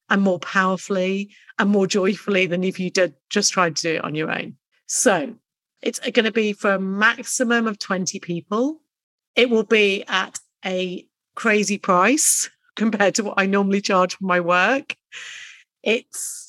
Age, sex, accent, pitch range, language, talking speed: 40-59, female, British, 180-225 Hz, English, 165 wpm